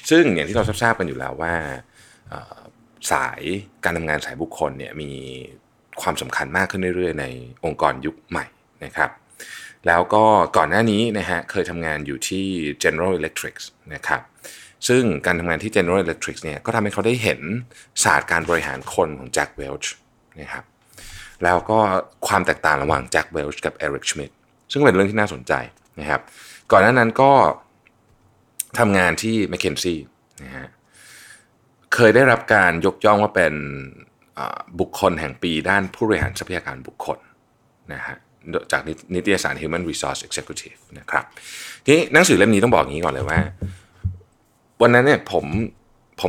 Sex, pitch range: male, 80-110 Hz